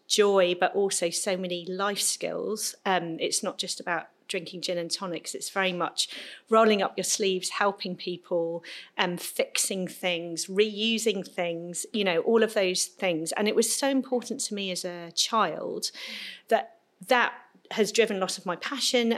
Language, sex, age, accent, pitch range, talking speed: English, female, 40-59, British, 180-225 Hz, 170 wpm